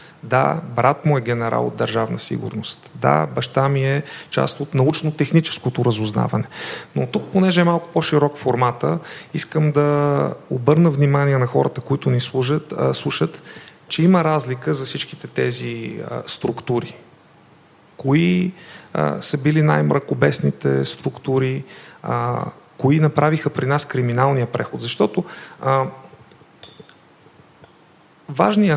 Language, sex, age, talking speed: Bulgarian, male, 40-59, 120 wpm